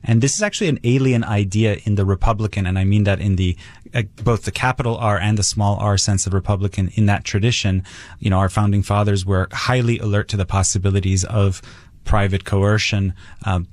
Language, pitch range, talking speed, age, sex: English, 100-115 Hz, 200 wpm, 30-49, male